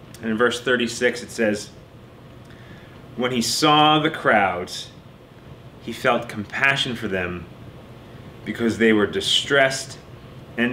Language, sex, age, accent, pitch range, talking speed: English, male, 30-49, American, 110-135 Hz, 115 wpm